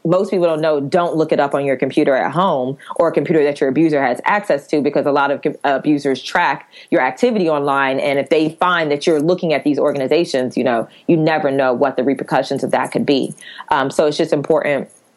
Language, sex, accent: English, female, American